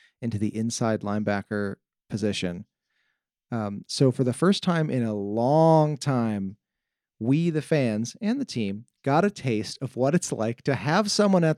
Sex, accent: male, American